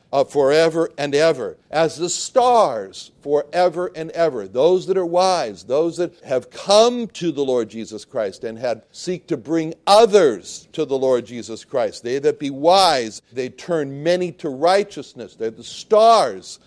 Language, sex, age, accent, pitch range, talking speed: English, male, 60-79, American, 130-195 Hz, 160 wpm